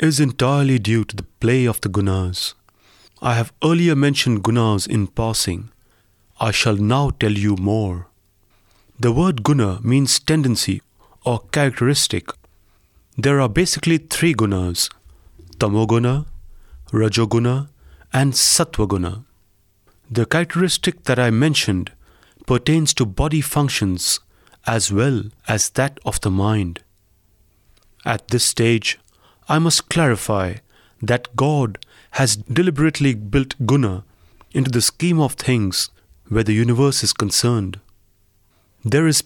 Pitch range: 100-135 Hz